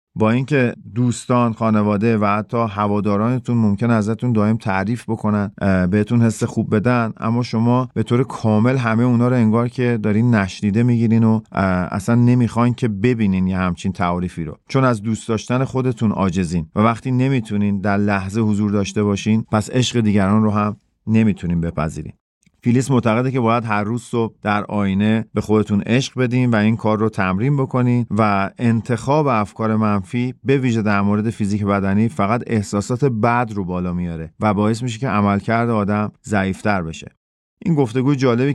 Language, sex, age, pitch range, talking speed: Persian, male, 40-59, 105-120 Hz, 165 wpm